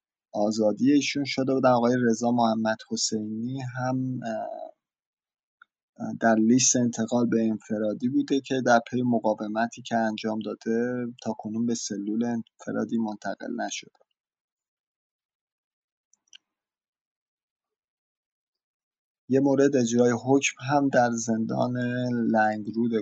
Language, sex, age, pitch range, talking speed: English, male, 30-49, 110-130 Hz, 95 wpm